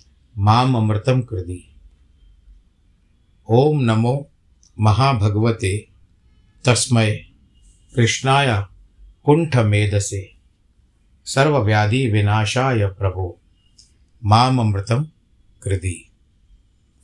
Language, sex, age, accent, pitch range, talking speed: Hindi, male, 50-69, native, 95-115 Hz, 35 wpm